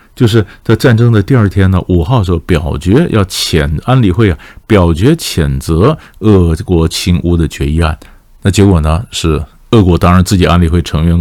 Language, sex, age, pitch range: Chinese, male, 50-69, 85-105 Hz